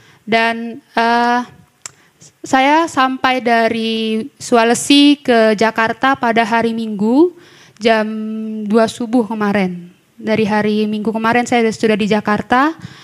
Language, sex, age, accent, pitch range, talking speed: Indonesian, female, 20-39, native, 220-255 Hz, 110 wpm